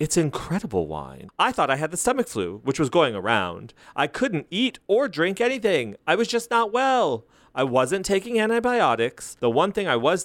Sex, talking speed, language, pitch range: male, 200 wpm, English, 110-170 Hz